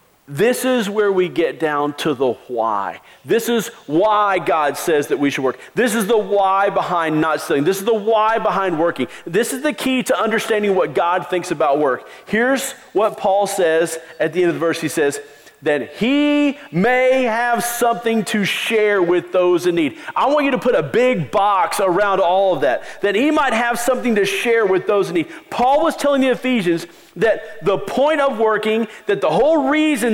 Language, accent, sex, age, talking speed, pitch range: English, American, male, 40-59, 205 wpm, 175-245 Hz